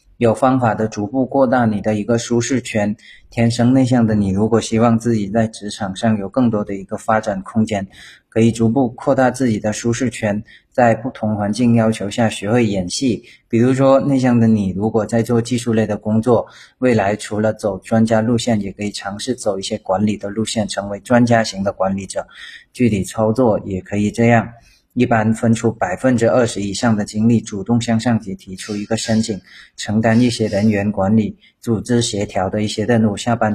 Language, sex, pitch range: Chinese, male, 105-120 Hz